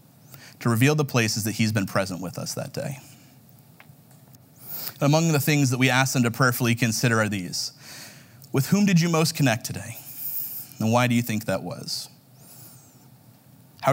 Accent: American